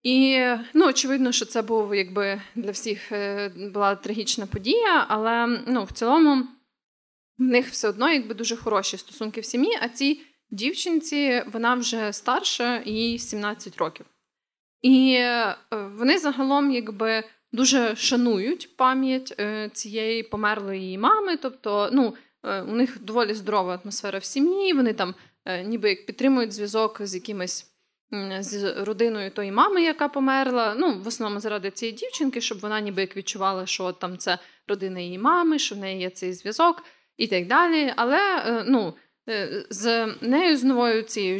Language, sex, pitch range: Ukrainian, female, 205-265 Hz